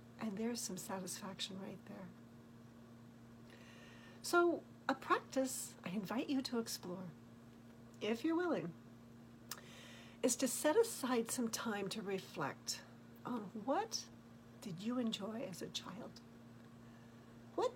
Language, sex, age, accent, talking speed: English, female, 60-79, American, 115 wpm